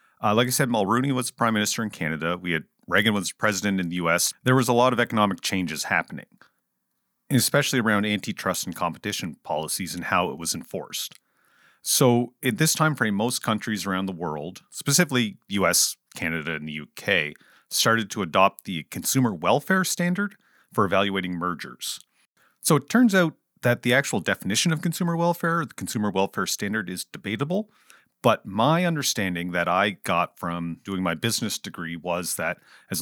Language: English